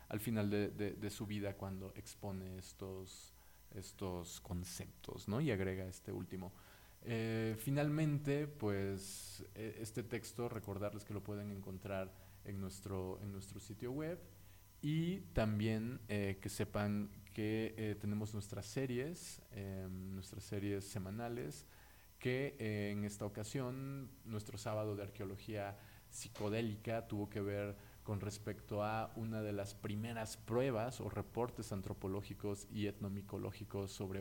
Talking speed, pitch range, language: 130 wpm, 95-110 Hz, Spanish